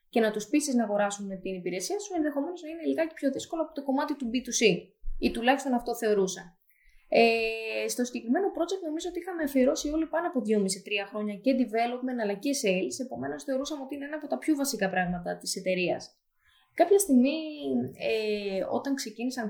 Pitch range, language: 210-290 Hz, Greek